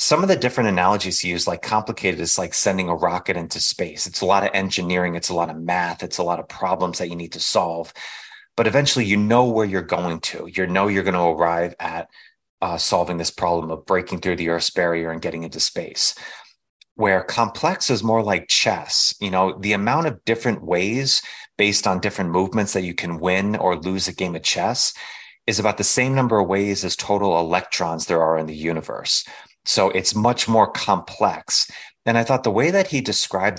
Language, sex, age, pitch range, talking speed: English, male, 30-49, 90-105 Hz, 215 wpm